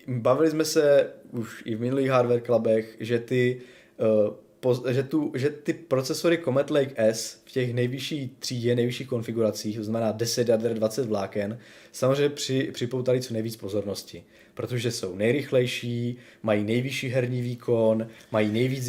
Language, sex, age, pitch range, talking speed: Czech, male, 20-39, 110-130 Hz, 135 wpm